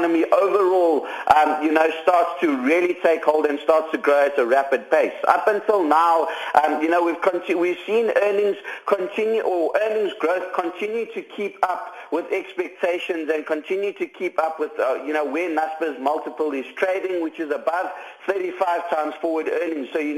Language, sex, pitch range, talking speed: English, male, 160-215 Hz, 180 wpm